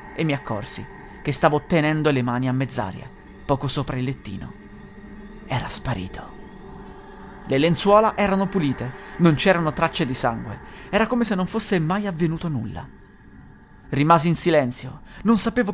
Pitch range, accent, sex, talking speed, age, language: 130-185 Hz, native, male, 145 wpm, 30-49, Italian